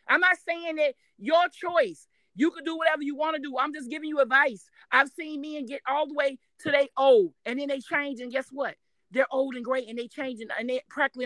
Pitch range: 260-330 Hz